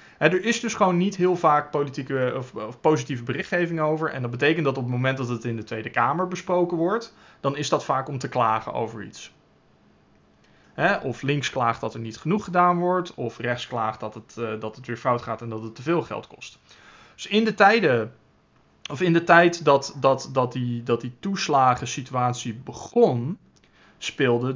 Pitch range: 120-160 Hz